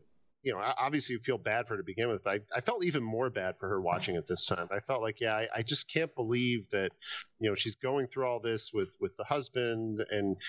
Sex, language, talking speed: male, English, 265 wpm